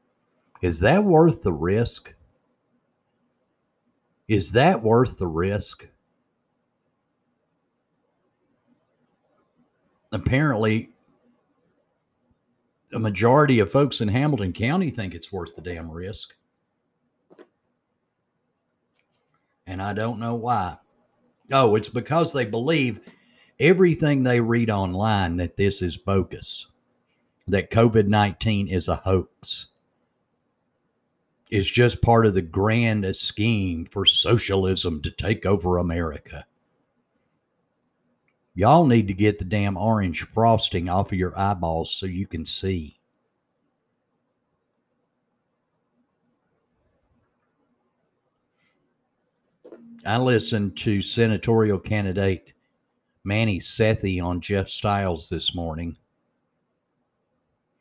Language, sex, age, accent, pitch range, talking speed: English, male, 50-69, American, 95-115 Hz, 90 wpm